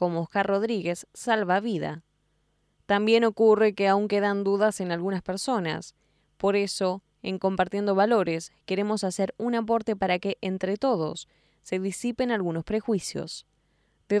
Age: 10-29